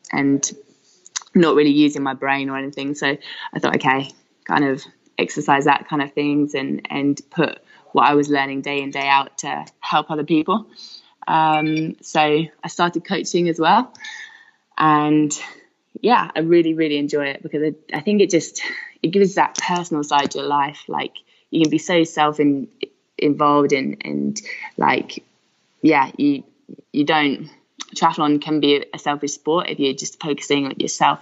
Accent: British